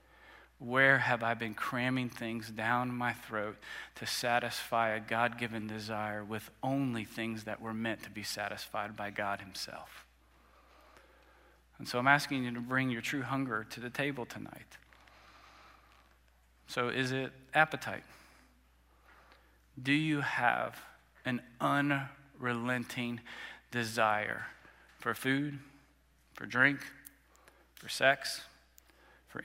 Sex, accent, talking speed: male, American, 120 wpm